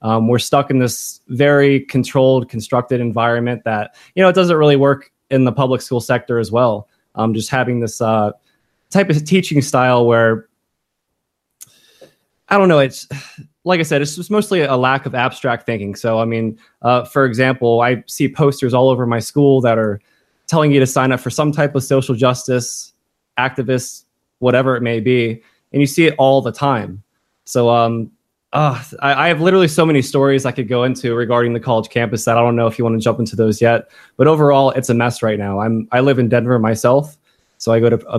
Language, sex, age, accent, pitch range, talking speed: English, male, 20-39, American, 115-140 Hz, 210 wpm